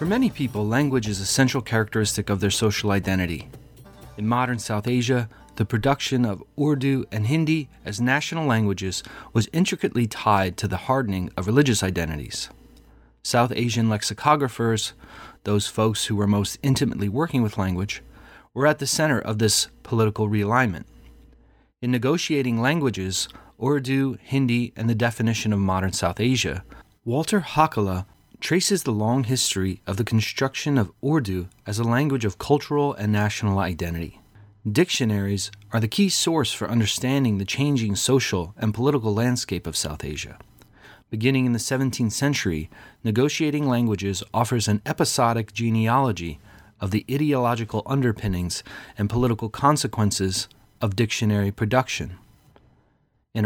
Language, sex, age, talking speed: English, male, 30-49, 140 wpm